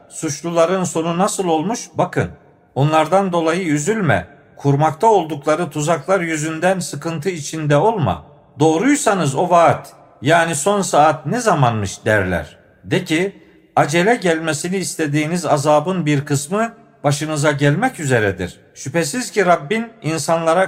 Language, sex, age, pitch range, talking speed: Turkish, male, 50-69, 145-180 Hz, 115 wpm